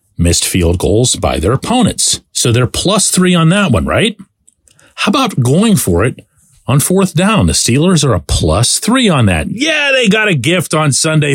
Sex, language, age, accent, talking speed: male, English, 40-59, American, 195 wpm